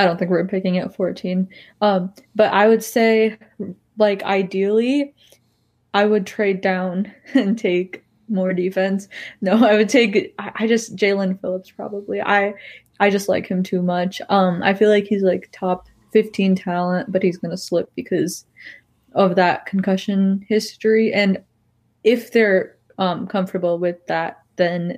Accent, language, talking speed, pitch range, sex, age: American, English, 155 wpm, 180-210 Hz, female, 20-39